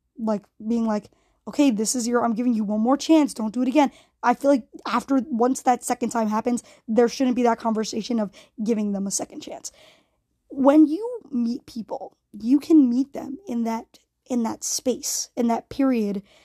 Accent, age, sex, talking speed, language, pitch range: American, 20-39, female, 195 wpm, English, 225-275 Hz